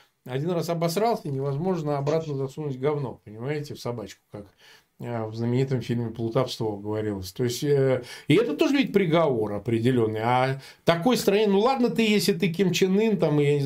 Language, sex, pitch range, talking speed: Russian, male, 135-195 Hz, 160 wpm